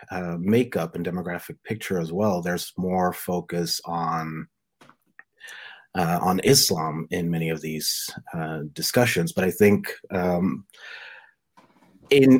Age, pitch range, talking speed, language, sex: 30-49, 90-115 Hz, 120 wpm, English, male